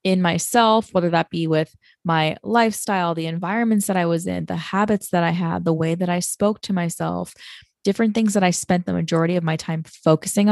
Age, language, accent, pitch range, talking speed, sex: 20-39, English, American, 165-200 Hz, 210 wpm, female